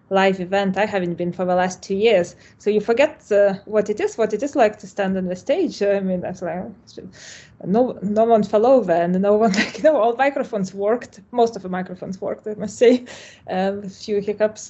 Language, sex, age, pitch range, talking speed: English, female, 20-39, 185-220 Hz, 230 wpm